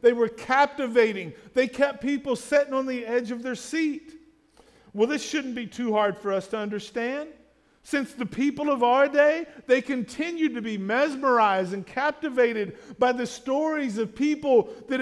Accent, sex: American, male